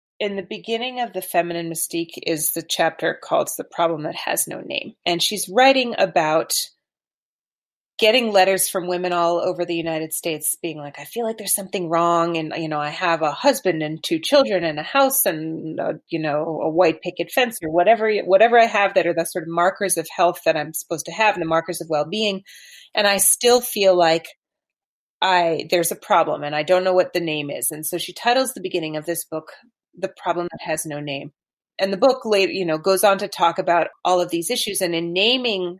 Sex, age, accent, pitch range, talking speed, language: female, 30-49, American, 165-210 Hz, 220 wpm, English